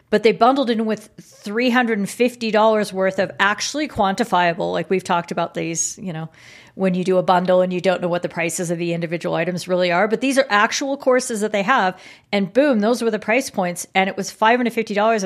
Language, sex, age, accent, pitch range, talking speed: English, female, 40-59, American, 185-230 Hz, 210 wpm